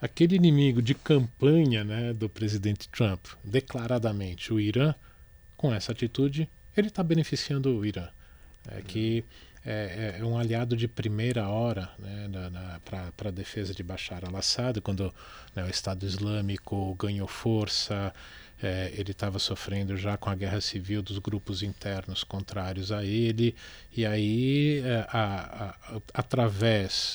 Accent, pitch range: Brazilian, 100-125 Hz